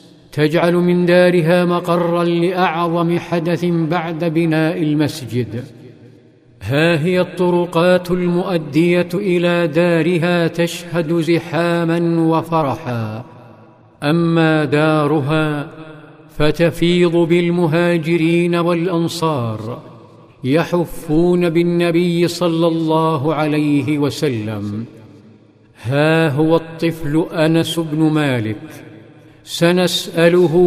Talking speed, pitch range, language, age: 70 wpm, 150-170 Hz, Arabic, 50-69